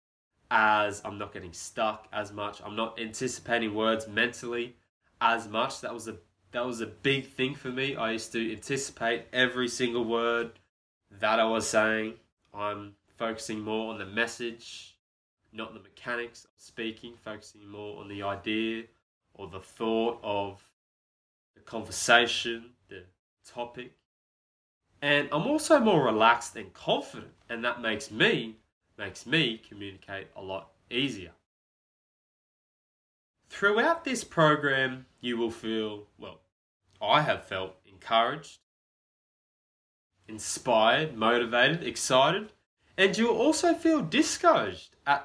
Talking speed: 125 wpm